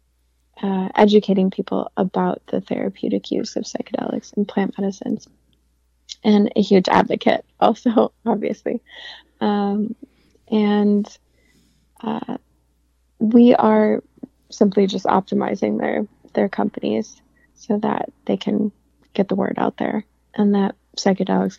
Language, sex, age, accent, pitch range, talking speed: English, female, 20-39, American, 195-220 Hz, 115 wpm